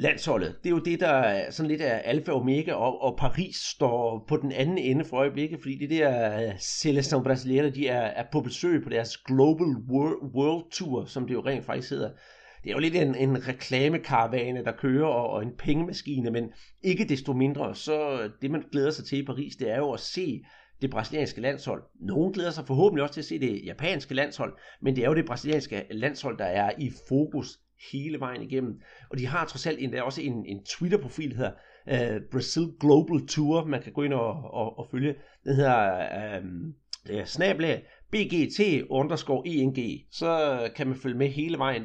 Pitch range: 130-155 Hz